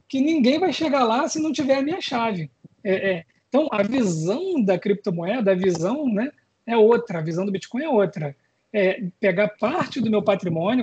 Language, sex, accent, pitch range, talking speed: Portuguese, male, Brazilian, 195-255 Hz, 195 wpm